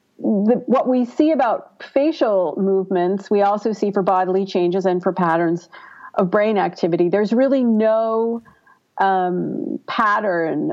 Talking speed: 135 wpm